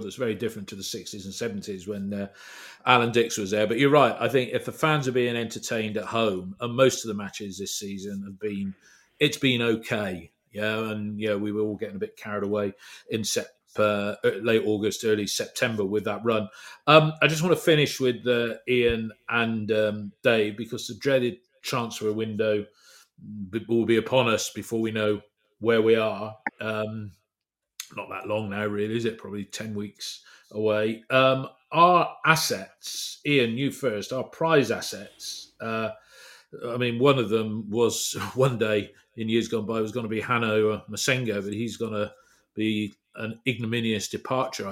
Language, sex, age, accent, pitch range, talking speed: English, male, 40-59, British, 105-120 Hz, 185 wpm